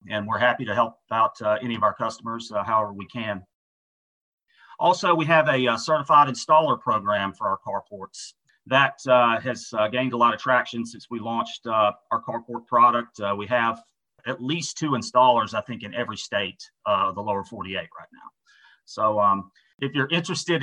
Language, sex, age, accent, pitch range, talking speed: English, male, 30-49, American, 115-150 Hz, 190 wpm